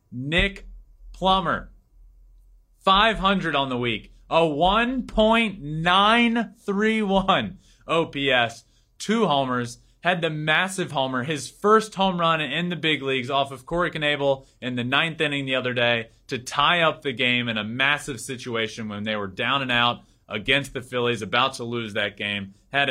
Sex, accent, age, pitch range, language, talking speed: male, American, 30-49, 115-155 Hz, English, 150 wpm